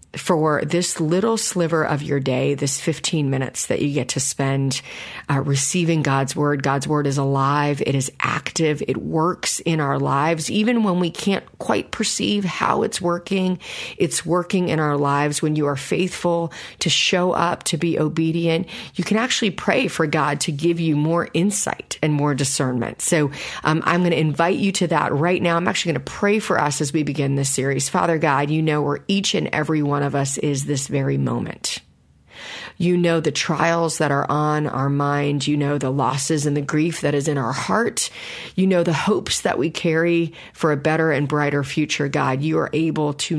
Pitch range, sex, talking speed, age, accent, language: 140-170 Hz, female, 205 wpm, 40-59, American, English